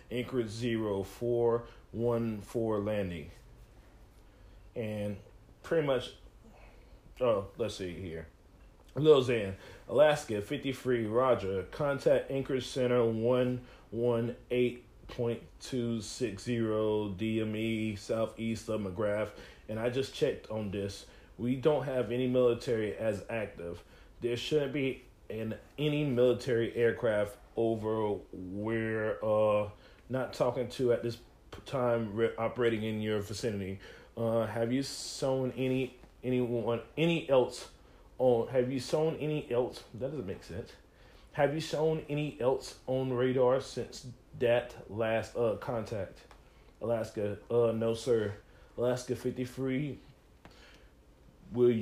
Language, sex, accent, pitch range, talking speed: English, male, American, 105-125 Hz, 110 wpm